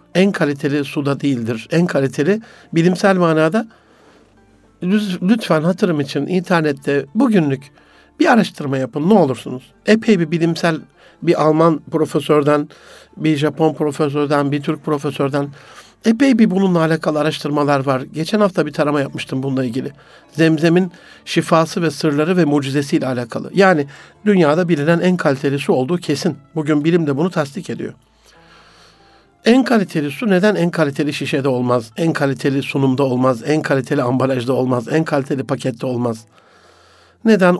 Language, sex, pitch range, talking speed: Turkish, male, 145-180 Hz, 135 wpm